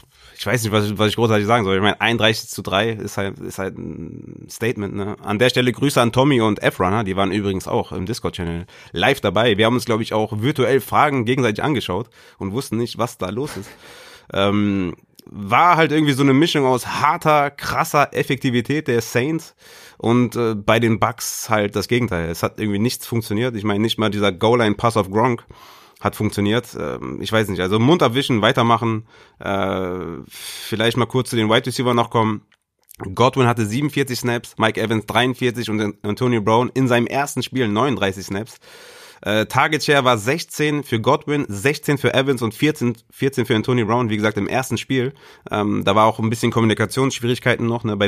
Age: 30-49